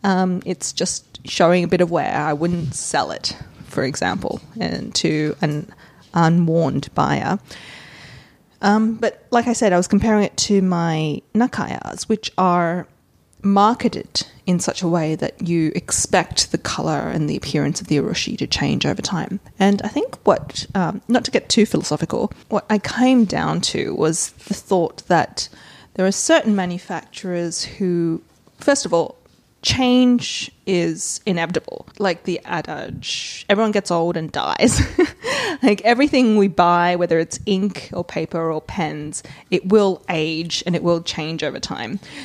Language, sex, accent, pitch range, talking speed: English, female, Australian, 165-205 Hz, 160 wpm